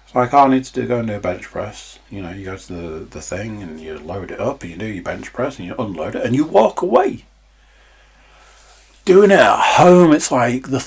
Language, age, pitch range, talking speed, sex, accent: English, 40-59, 90-130 Hz, 260 wpm, male, British